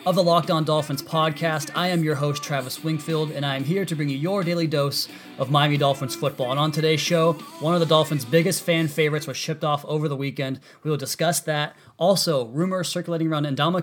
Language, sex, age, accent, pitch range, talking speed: English, male, 30-49, American, 140-165 Hz, 225 wpm